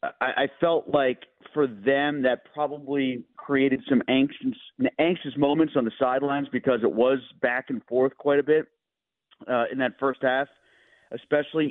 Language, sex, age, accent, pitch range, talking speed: English, male, 40-59, American, 130-150 Hz, 155 wpm